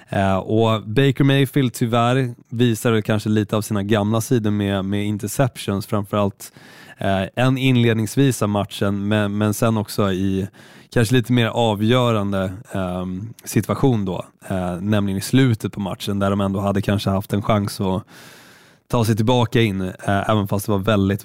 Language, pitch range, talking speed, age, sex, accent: Swedish, 100-125 Hz, 150 wpm, 20-39, male, native